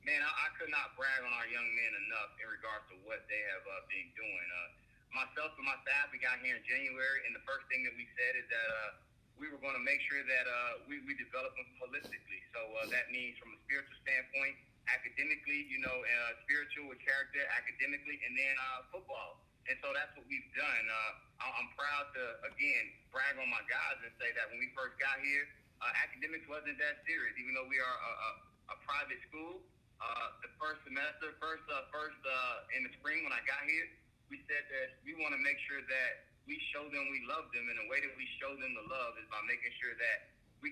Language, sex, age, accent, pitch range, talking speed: English, male, 30-49, American, 130-165 Hz, 230 wpm